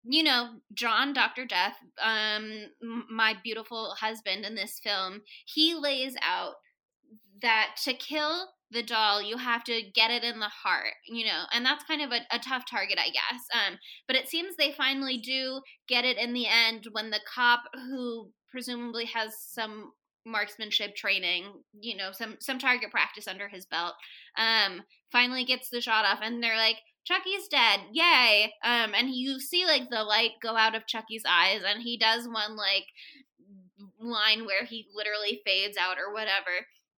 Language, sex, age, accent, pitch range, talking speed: English, female, 10-29, American, 215-265 Hz, 175 wpm